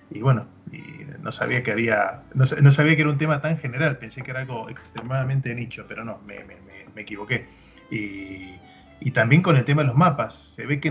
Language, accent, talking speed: Spanish, Argentinian, 230 wpm